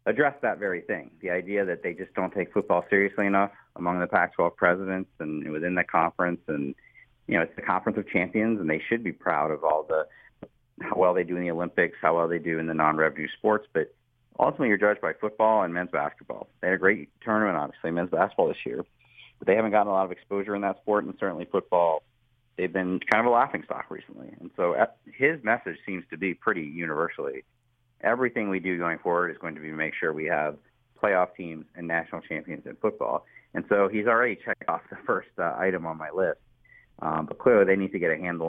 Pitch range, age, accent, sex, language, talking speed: 80-100 Hz, 40-59, American, male, English, 225 wpm